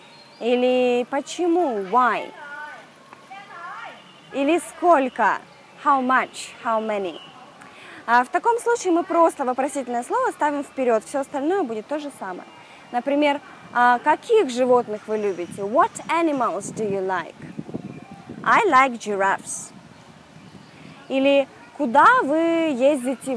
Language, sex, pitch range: Russian, female, 235-315 Hz